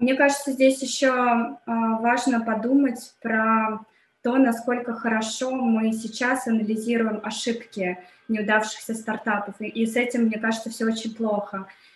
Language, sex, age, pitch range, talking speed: Russian, female, 20-39, 210-235 Hz, 120 wpm